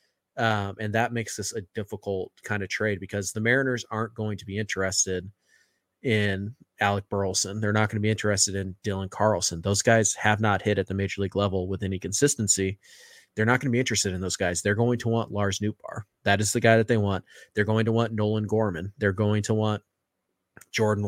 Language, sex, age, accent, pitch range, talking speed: English, male, 30-49, American, 100-115 Hz, 215 wpm